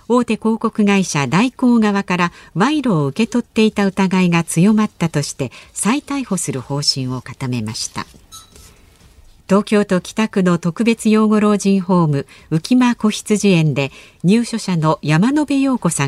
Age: 50-69